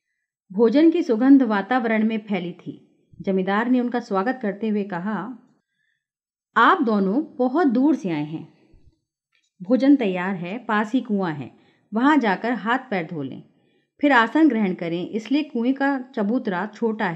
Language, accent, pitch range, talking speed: Hindi, native, 190-270 Hz, 145 wpm